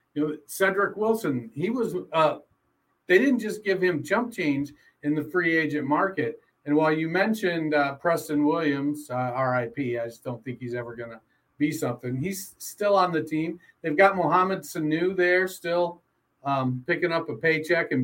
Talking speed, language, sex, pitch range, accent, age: 185 wpm, English, male, 145-180 Hz, American, 50-69